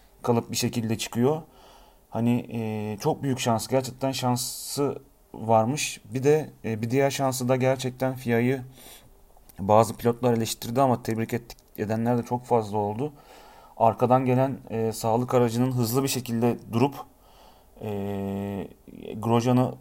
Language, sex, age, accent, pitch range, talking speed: Turkish, male, 40-59, native, 110-130 Hz, 130 wpm